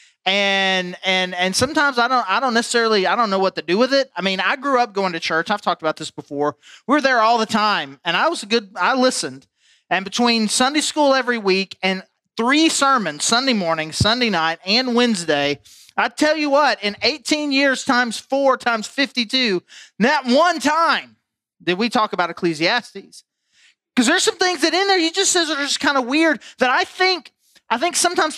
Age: 30-49